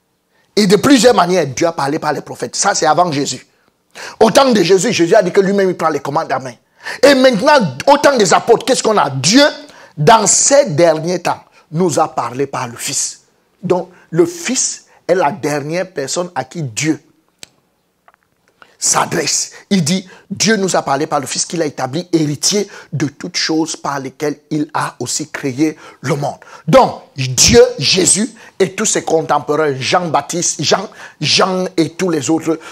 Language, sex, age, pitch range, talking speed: French, male, 50-69, 155-235 Hz, 180 wpm